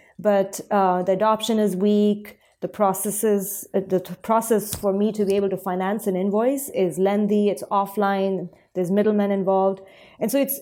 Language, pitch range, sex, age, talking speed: English, 185-215 Hz, female, 30-49, 170 wpm